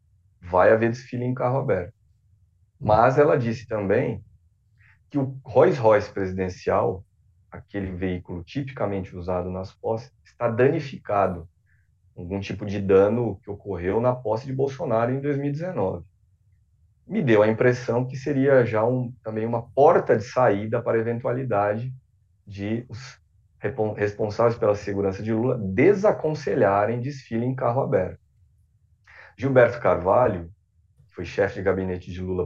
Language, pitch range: Portuguese, 95-120 Hz